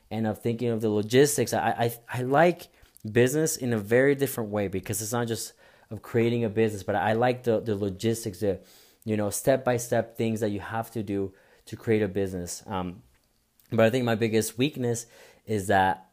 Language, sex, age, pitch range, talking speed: English, male, 30-49, 100-120 Hz, 205 wpm